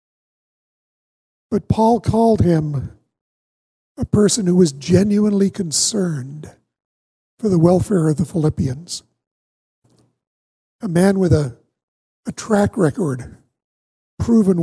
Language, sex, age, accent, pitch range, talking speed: English, male, 50-69, American, 160-205 Hz, 100 wpm